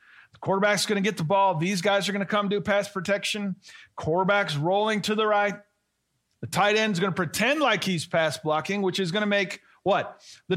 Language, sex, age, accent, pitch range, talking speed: English, male, 40-59, American, 175-225 Hz, 210 wpm